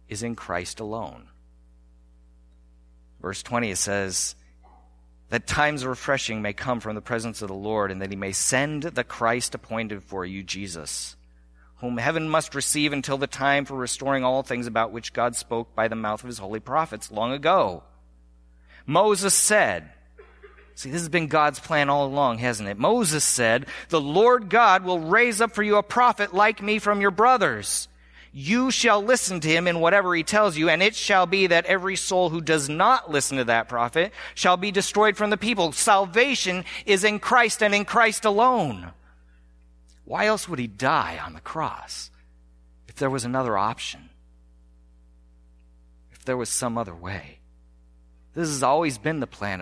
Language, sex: English, male